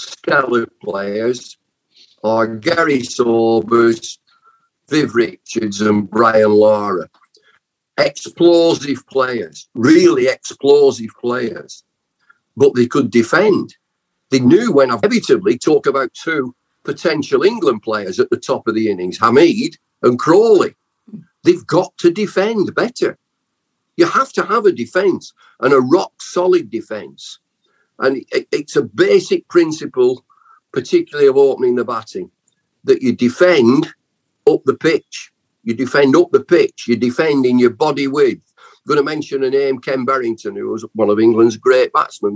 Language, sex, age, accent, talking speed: English, male, 50-69, British, 135 wpm